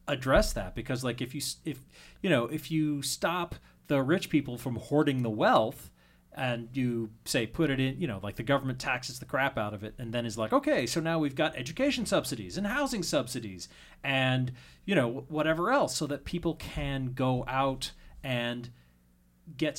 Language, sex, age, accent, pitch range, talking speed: English, male, 40-59, American, 105-155 Hz, 190 wpm